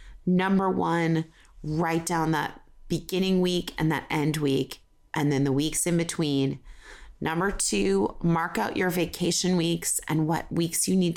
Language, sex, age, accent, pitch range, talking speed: English, female, 30-49, American, 160-195 Hz, 155 wpm